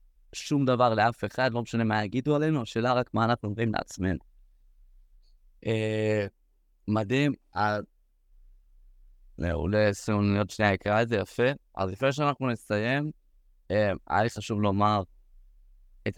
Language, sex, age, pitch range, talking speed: Hebrew, male, 20-39, 100-115 Hz, 120 wpm